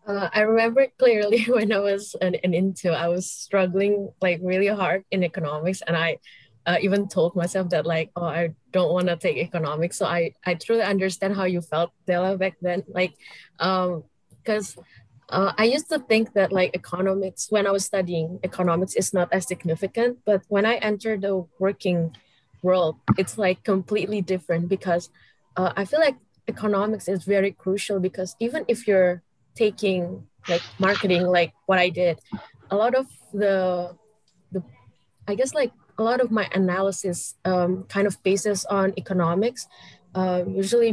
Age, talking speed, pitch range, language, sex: 20-39, 165 wpm, 175-200 Hz, English, female